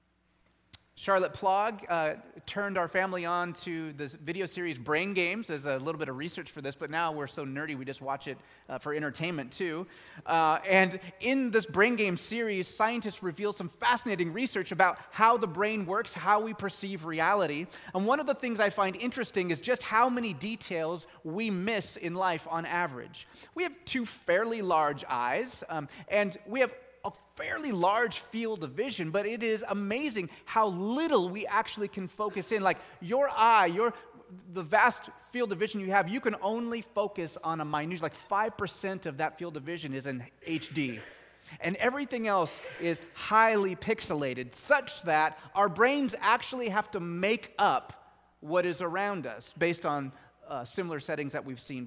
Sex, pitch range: male, 160-215 Hz